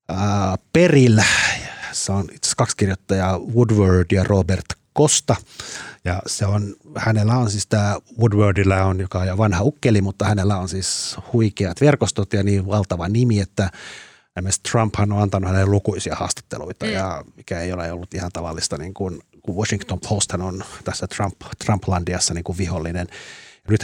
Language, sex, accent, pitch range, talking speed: Finnish, male, native, 90-110 Hz, 155 wpm